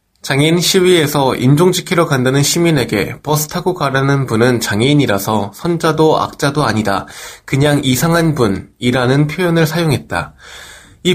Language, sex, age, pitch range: Korean, male, 20-39, 120-170 Hz